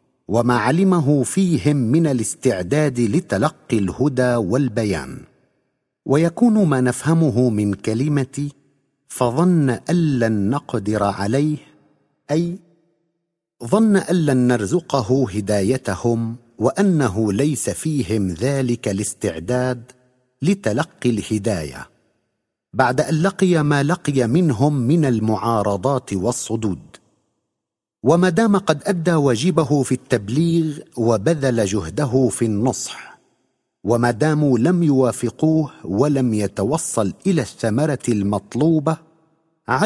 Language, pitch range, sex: Arabic, 115-160 Hz, male